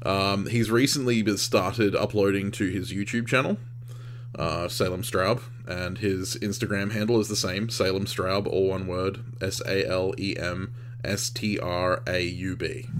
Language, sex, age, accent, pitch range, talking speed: English, male, 20-39, Australian, 105-120 Hz, 115 wpm